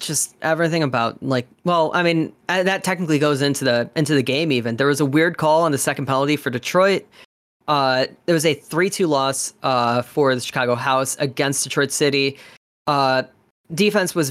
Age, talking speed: 20-39, 185 wpm